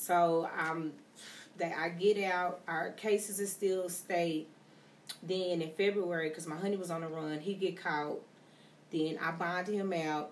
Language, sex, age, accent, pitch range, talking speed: English, female, 30-49, American, 165-210 Hz, 170 wpm